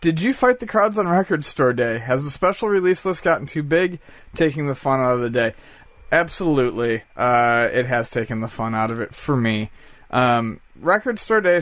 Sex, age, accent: male, 30-49, American